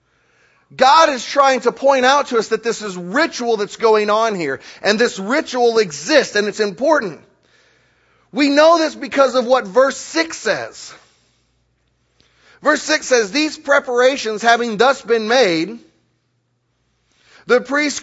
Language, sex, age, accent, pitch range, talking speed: English, male, 40-59, American, 175-260 Hz, 145 wpm